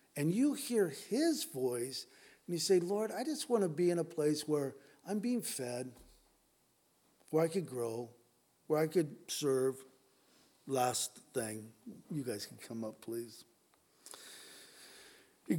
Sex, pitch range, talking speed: male, 145-185 Hz, 145 wpm